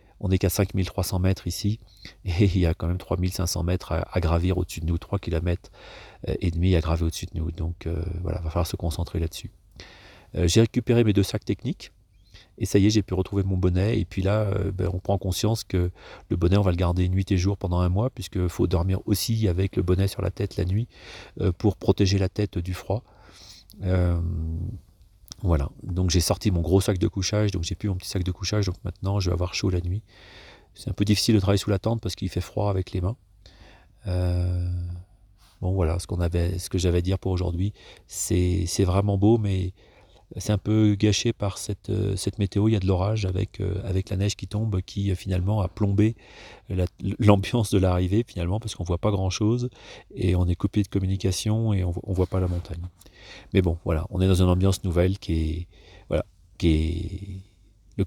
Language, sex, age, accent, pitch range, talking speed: French, male, 40-59, French, 90-100 Hz, 220 wpm